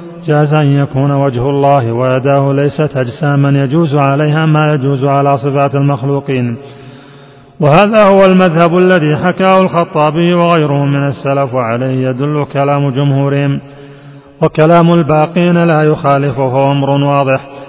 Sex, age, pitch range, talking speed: male, 30-49, 140-150 Hz, 115 wpm